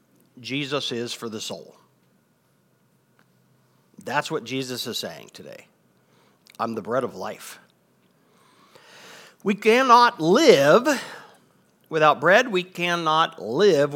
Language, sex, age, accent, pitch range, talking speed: English, male, 50-69, American, 130-185 Hz, 105 wpm